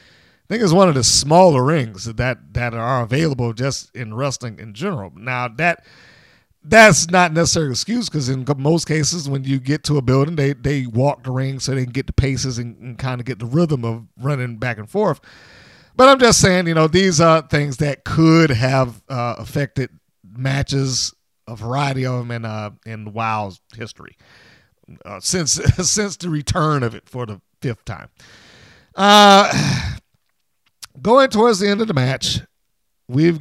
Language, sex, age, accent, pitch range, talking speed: English, male, 40-59, American, 125-175 Hz, 180 wpm